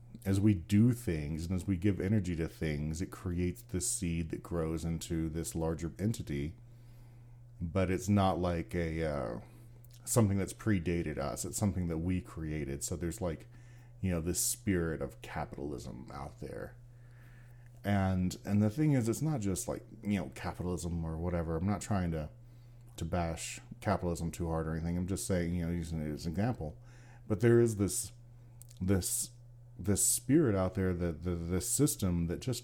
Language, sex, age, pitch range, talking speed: English, male, 40-59, 90-120 Hz, 180 wpm